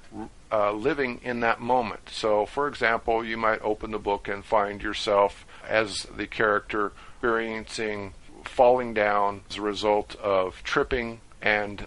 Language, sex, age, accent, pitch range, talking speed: English, male, 50-69, American, 100-125 Hz, 140 wpm